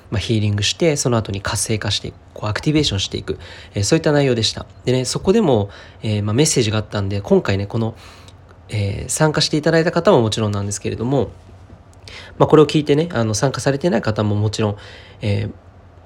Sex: male